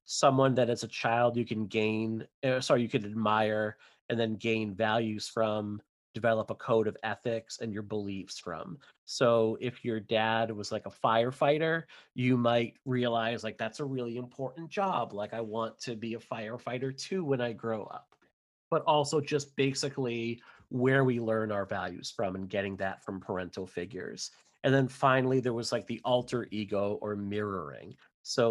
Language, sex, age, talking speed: English, male, 30-49, 175 wpm